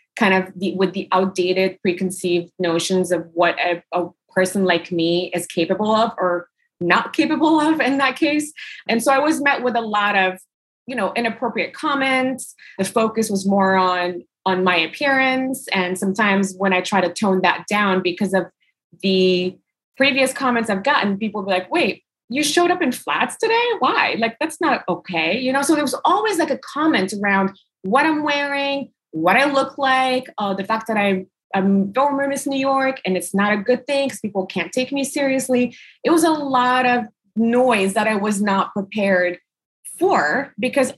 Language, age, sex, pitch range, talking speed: English, 20-39, female, 195-285 Hz, 185 wpm